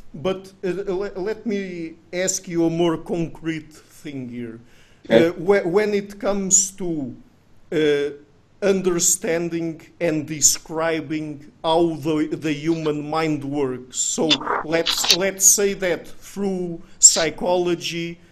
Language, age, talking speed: English, 50-69, 110 wpm